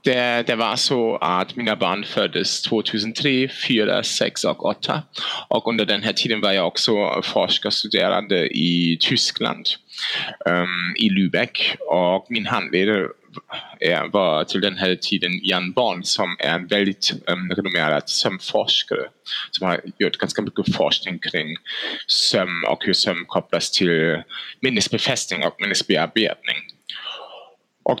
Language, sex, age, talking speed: Swedish, male, 20-39, 135 wpm